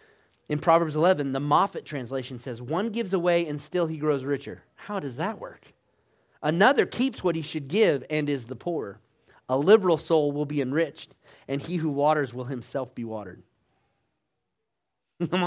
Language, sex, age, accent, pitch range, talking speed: English, male, 30-49, American, 125-175 Hz, 170 wpm